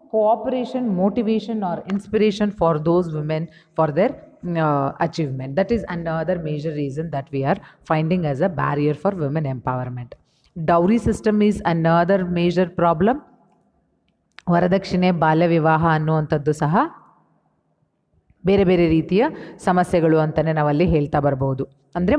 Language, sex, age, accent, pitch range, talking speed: English, female, 30-49, Indian, 150-200 Hz, 90 wpm